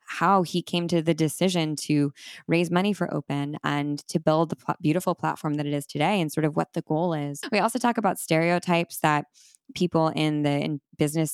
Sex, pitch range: female, 145-175 Hz